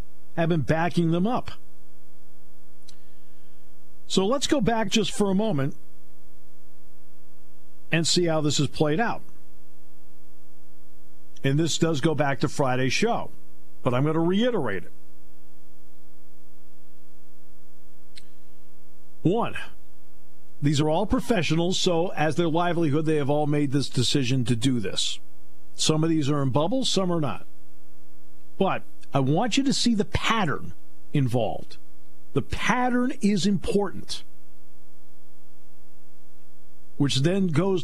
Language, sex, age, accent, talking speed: English, male, 50-69, American, 120 wpm